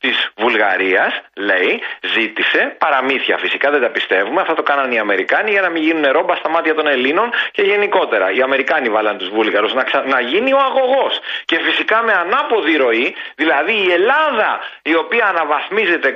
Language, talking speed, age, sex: Greek, 175 wpm, 40-59, male